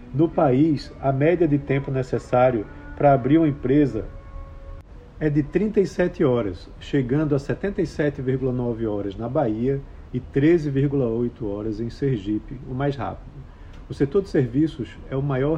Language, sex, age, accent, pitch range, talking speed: Portuguese, male, 40-59, Brazilian, 115-155 Hz, 140 wpm